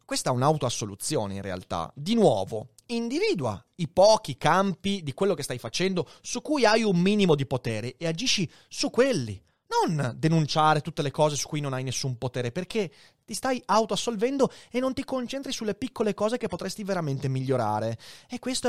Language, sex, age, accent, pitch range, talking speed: Italian, male, 30-49, native, 120-180 Hz, 175 wpm